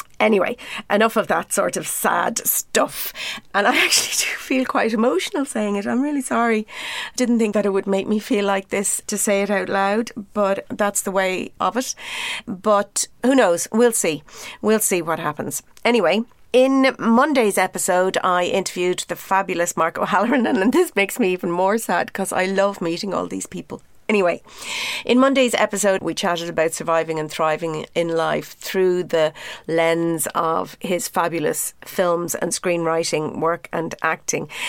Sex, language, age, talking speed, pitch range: female, English, 40-59, 170 wpm, 165-210 Hz